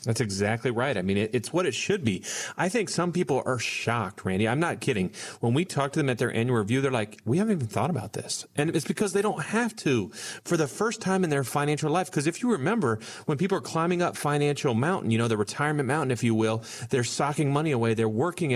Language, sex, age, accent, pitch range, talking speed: English, male, 40-59, American, 115-160 Hz, 250 wpm